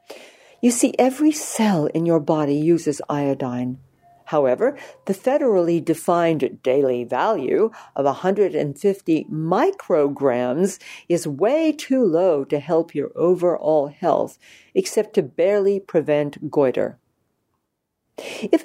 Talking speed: 105 wpm